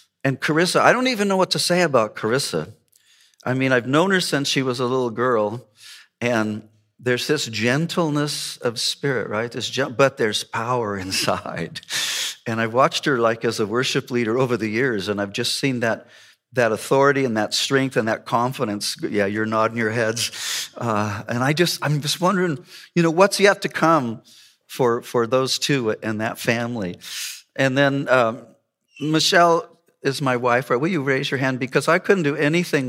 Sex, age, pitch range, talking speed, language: male, 50-69, 115-150 Hz, 190 wpm, English